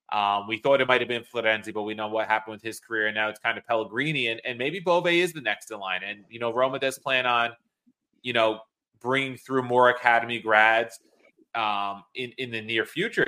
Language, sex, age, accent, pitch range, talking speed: English, male, 30-49, American, 110-140 Hz, 230 wpm